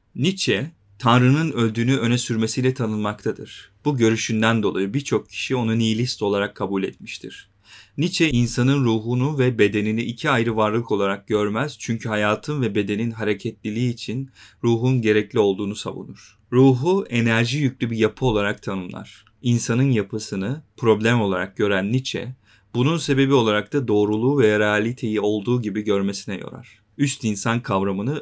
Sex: male